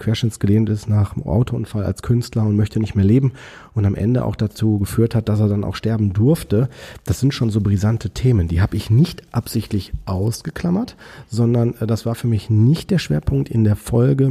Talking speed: 200 wpm